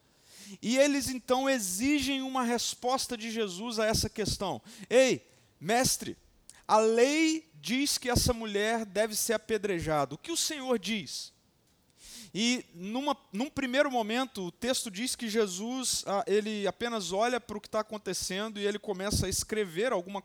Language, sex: Portuguese, male